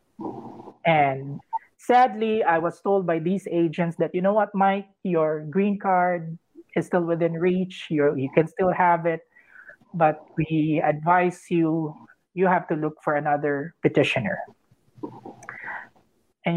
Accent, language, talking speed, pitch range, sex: Filipino, English, 135 wpm, 165-200 Hz, male